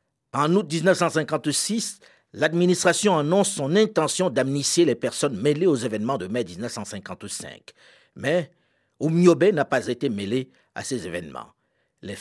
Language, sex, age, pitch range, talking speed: French, male, 50-69, 135-185 Hz, 130 wpm